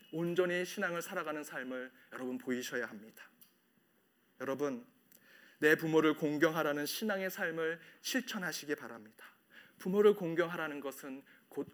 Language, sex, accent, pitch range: Korean, male, native, 135-170 Hz